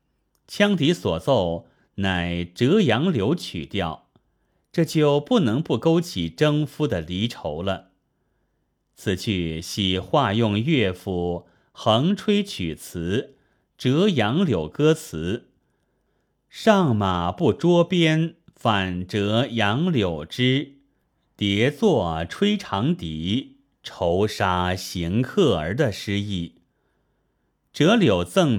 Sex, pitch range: male, 90-145 Hz